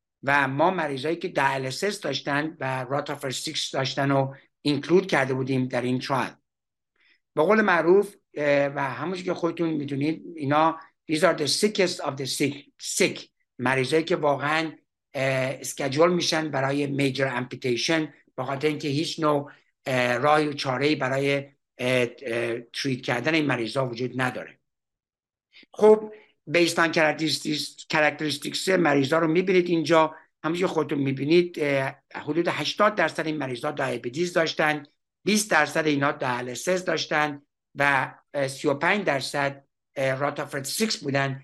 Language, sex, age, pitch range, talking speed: Persian, male, 60-79, 135-165 Hz, 125 wpm